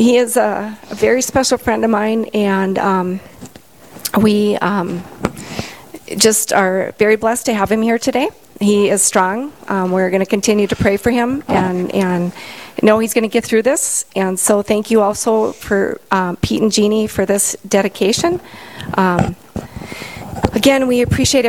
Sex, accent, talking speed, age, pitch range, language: female, American, 160 wpm, 40-59, 185-225 Hz, English